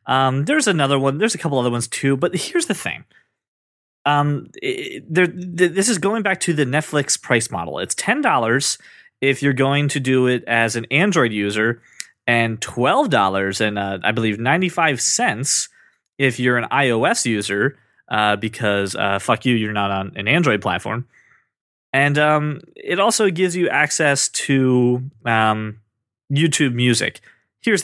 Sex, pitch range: male, 115-150 Hz